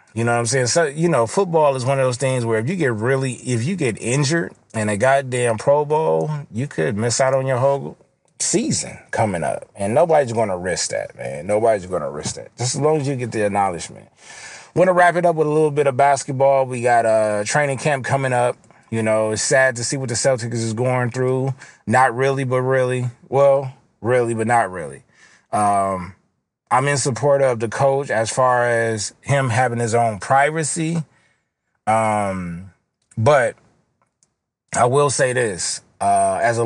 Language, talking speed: English, 195 wpm